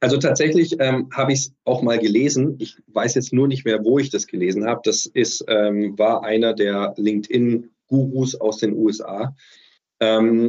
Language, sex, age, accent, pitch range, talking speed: German, male, 40-59, German, 115-145 Hz, 170 wpm